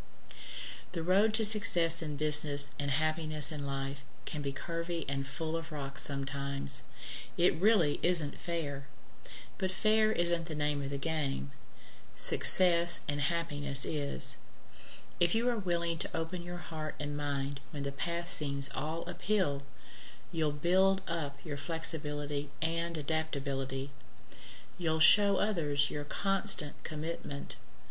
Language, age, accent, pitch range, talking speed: English, 40-59, American, 140-165 Hz, 135 wpm